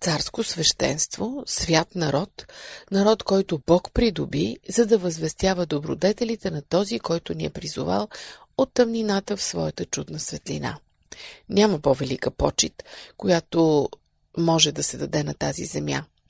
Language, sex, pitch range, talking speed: Bulgarian, female, 160-220 Hz, 130 wpm